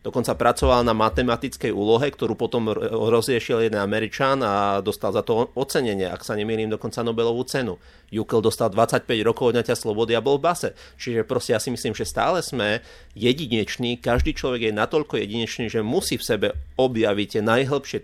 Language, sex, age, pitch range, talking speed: Slovak, male, 30-49, 105-125 Hz, 175 wpm